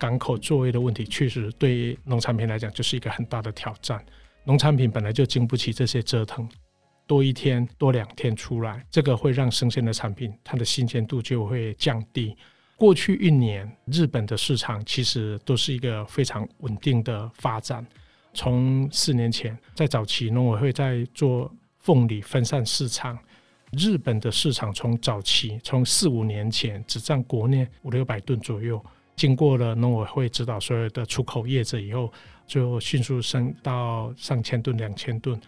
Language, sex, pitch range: Chinese, male, 115-130 Hz